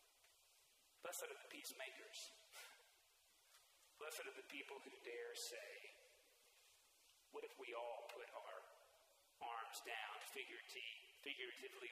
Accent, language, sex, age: American, English, male, 40-59